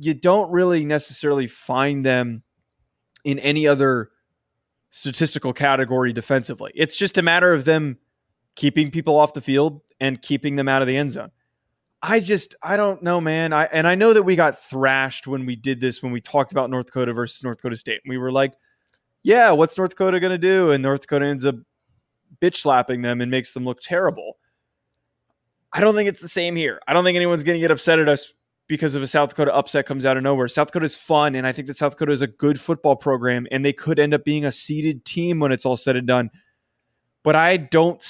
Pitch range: 130-160 Hz